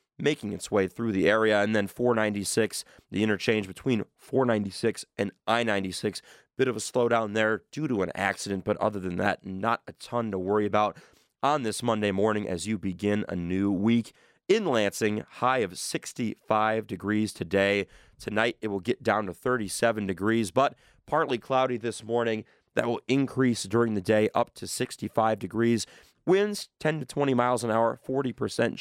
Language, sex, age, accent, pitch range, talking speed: English, male, 30-49, American, 105-130 Hz, 170 wpm